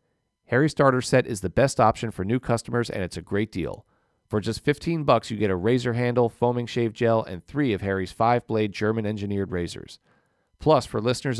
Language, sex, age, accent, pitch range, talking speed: English, male, 40-59, American, 105-130 Hz, 195 wpm